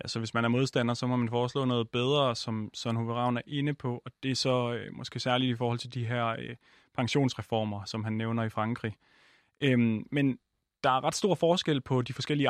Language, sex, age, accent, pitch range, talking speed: Danish, male, 30-49, native, 120-150 Hz, 215 wpm